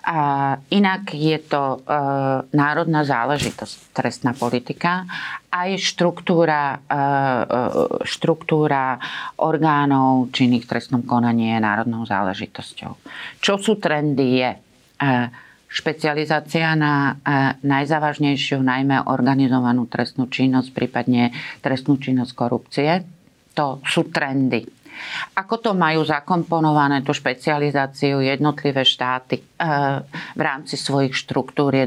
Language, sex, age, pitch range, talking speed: Slovak, female, 40-59, 130-165 Hz, 90 wpm